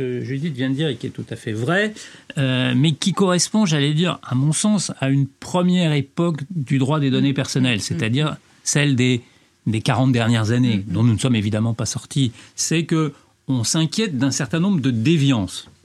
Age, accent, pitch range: 40-59, French, 120-165 Hz